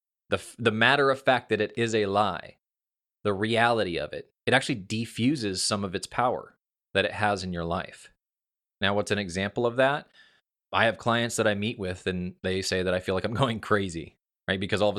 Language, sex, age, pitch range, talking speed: English, male, 20-39, 95-115 Hz, 215 wpm